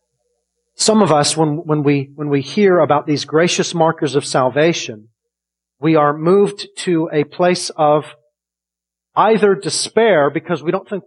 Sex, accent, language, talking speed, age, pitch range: male, American, English, 140 wpm, 40-59, 125-175 Hz